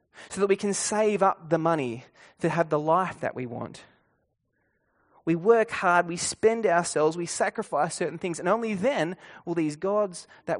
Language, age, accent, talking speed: English, 20-39, Australian, 180 wpm